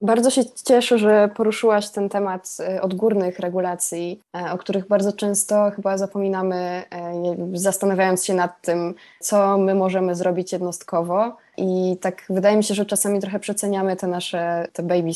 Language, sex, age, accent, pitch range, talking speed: English, female, 20-39, Polish, 170-205 Hz, 145 wpm